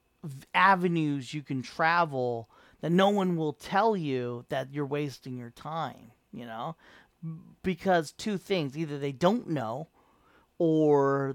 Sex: male